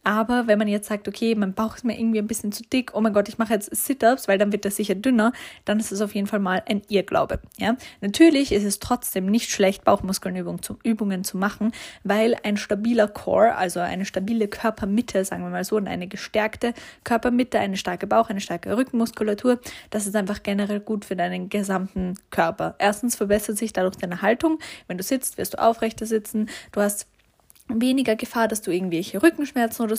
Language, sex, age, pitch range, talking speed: German, female, 10-29, 195-230 Hz, 200 wpm